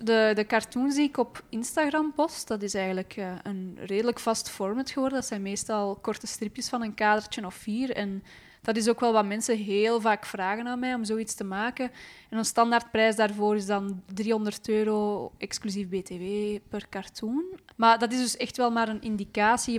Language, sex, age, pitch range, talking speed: English, female, 20-39, 195-225 Hz, 190 wpm